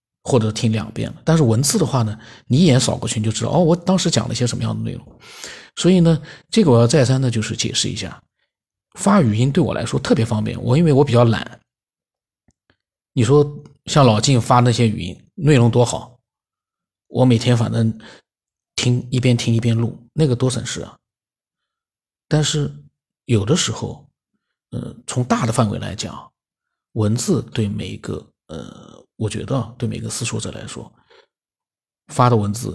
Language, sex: Chinese, male